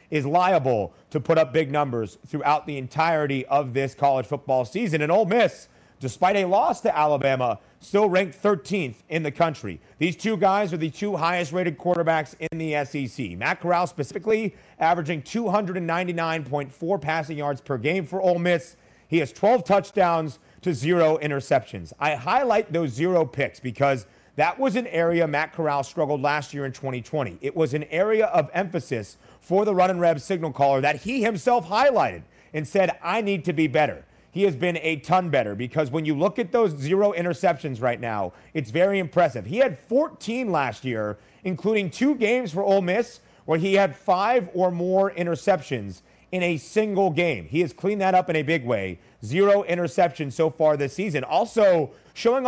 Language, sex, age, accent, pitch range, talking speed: English, male, 30-49, American, 145-195 Hz, 180 wpm